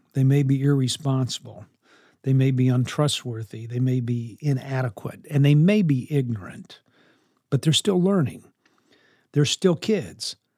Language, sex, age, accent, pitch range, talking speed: English, male, 50-69, American, 120-155 Hz, 135 wpm